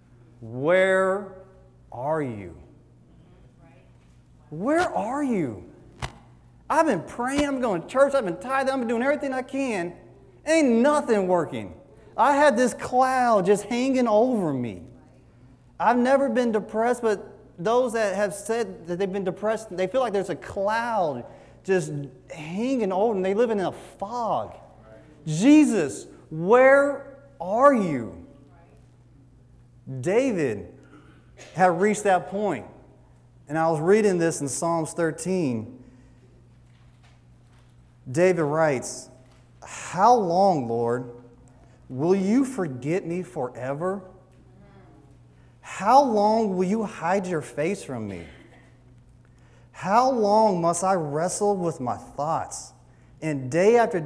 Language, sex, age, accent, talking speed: English, male, 30-49, American, 120 wpm